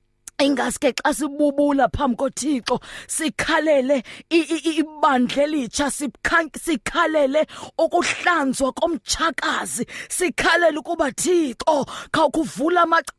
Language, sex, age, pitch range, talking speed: English, female, 20-39, 285-350 Hz, 120 wpm